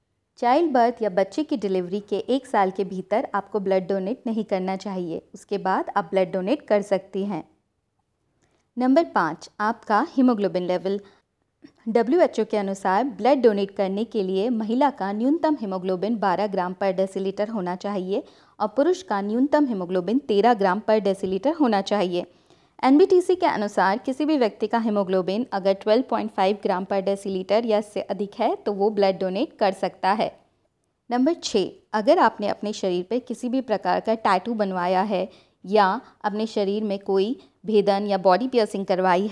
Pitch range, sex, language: 195-230 Hz, female, Hindi